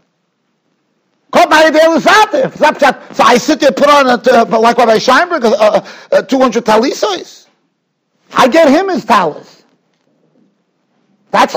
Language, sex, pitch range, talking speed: English, male, 230-300 Hz, 120 wpm